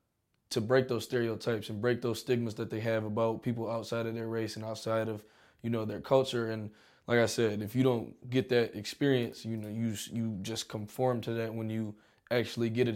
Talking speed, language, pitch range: 220 wpm, English, 110-120 Hz